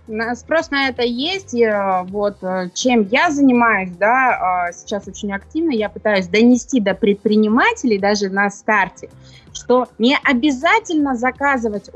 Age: 20-39